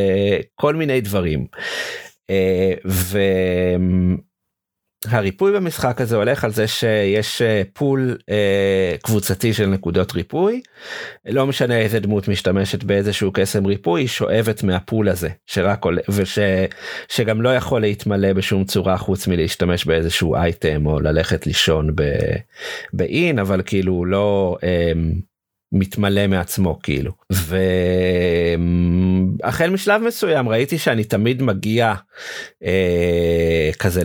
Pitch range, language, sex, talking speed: 95-120 Hz, Hebrew, male, 105 wpm